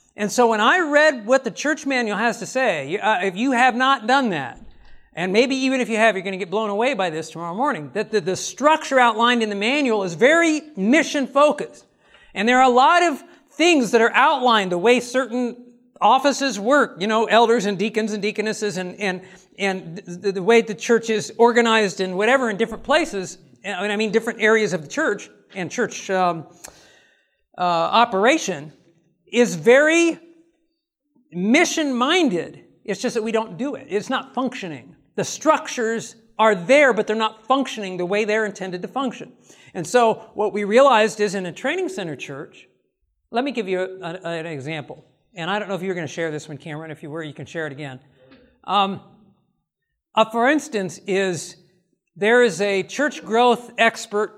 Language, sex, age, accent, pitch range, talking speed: English, male, 50-69, American, 190-255 Hz, 185 wpm